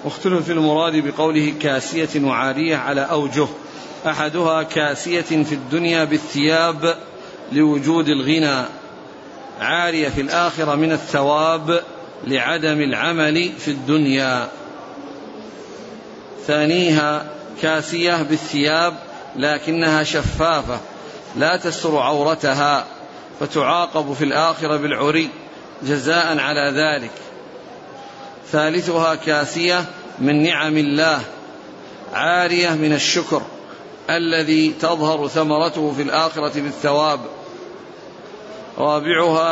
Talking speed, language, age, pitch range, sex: 80 wpm, Arabic, 50-69, 150-165 Hz, male